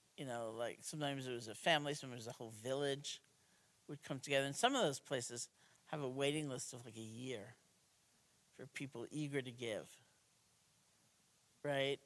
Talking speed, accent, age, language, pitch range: 180 wpm, American, 50-69, English, 130-150 Hz